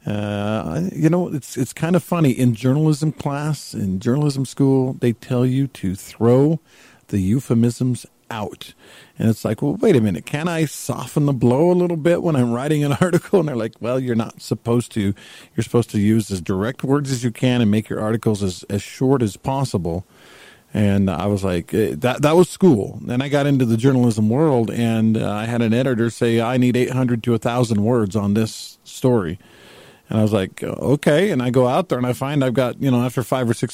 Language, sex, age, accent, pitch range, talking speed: English, male, 50-69, American, 115-145 Hz, 215 wpm